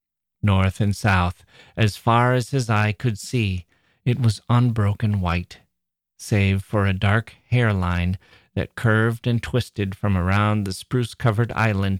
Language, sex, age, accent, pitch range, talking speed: English, male, 40-59, American, 95-115 Hz, 140 wpm